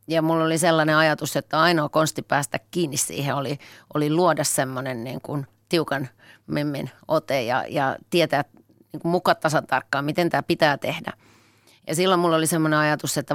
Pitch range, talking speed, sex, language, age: 140-165 Hz, 170 wpm, female, Finnish, 30-49